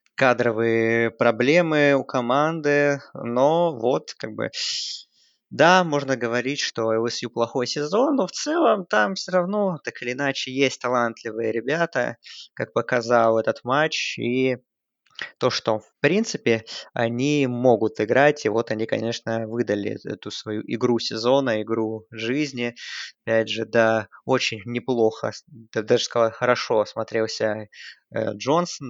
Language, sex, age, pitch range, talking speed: Russian, male, 20-39, 115-135 Hz, 125 wpm